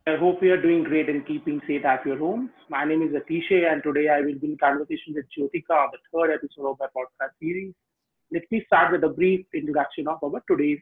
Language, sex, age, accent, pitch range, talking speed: English, male, 30-49, Indian, 155-210 Hz, 240 wpm